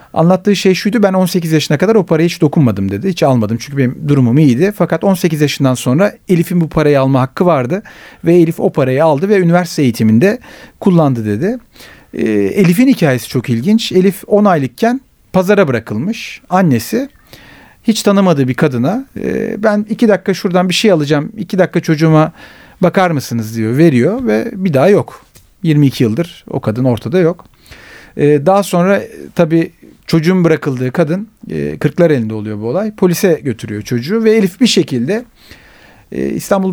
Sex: male